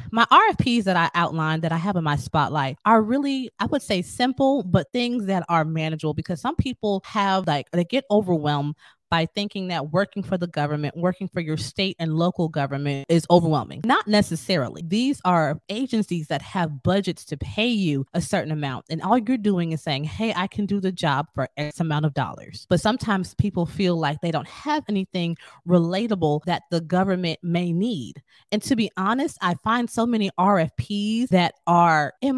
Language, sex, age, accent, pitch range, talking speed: English, female, 20-39, American, 155-210 Hz, 195 wpm